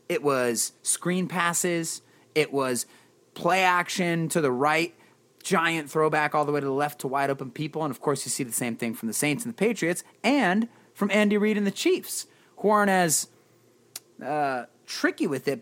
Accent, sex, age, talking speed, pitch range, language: American, male, 30-49, 195 wpm, 125-180 Hz, English